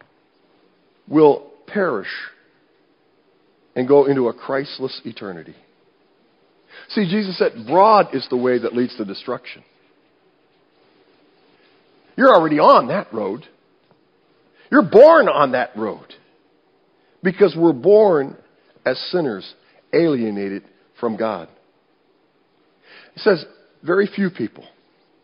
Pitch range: 120-195 Hz